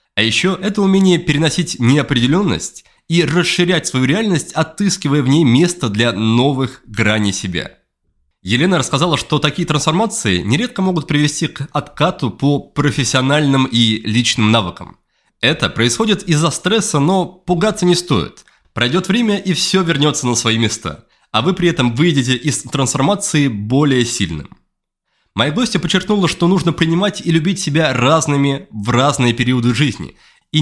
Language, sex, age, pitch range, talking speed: Russian, male, 20-39, 120-175 Hz, 145 wpm